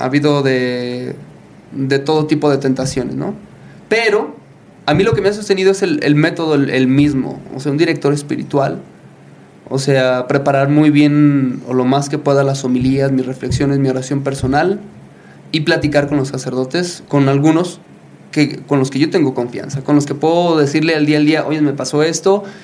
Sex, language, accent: male, English, Mexican